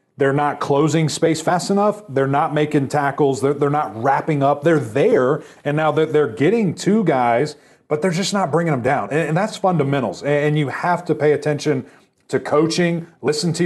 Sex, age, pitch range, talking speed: male, 30-49, 140-165 Hz, 200 wpm